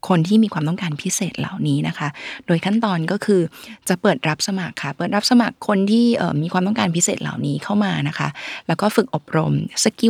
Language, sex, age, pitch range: Thai, female, 20-39, 160-210 Hz